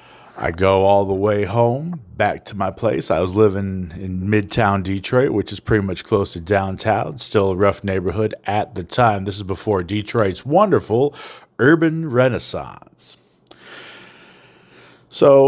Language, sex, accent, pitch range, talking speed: English, male, American, 95-125 Hz, 145 wpm